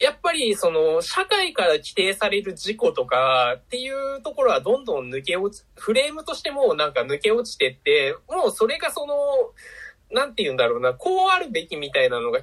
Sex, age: male, 20-39